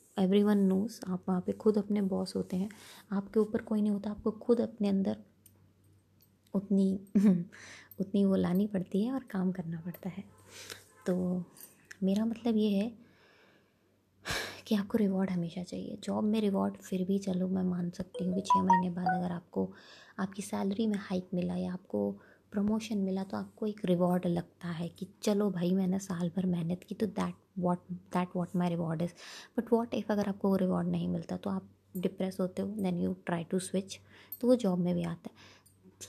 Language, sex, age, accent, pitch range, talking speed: Hindi, female, 20-39, native, 180-210 Hz, 190 wpm